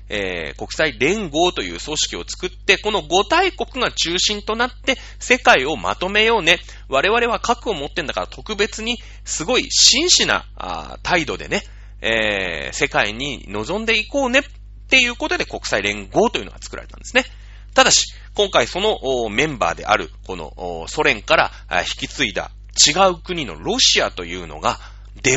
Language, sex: Japanese, male